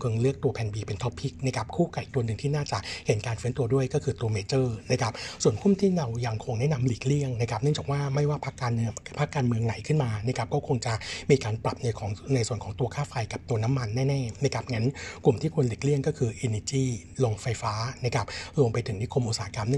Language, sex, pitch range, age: Thai, male, 115-140 Hz, 60-79